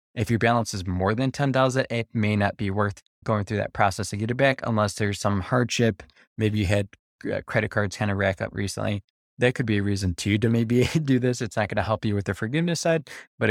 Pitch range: 100-115 Hz